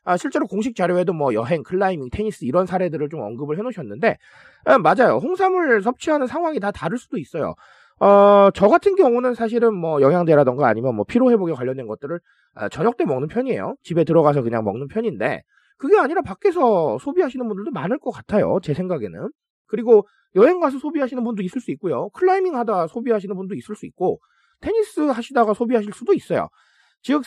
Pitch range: 165-255 Hz